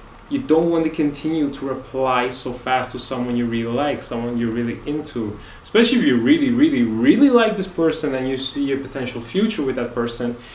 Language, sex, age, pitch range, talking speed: English, male, 20-39, 130-185 Hz, 205 wpm